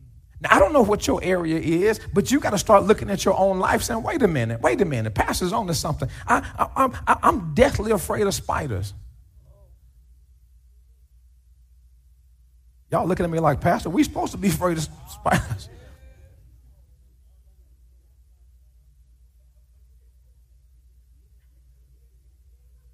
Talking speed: 130 wpm